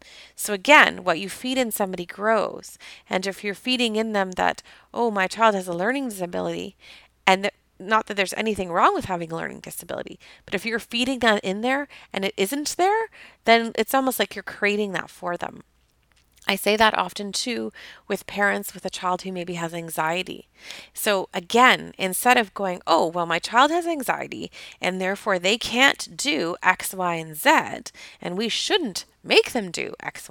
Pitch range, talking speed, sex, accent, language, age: 185-250 Hz, 185 wpm, female, American, English, 30-49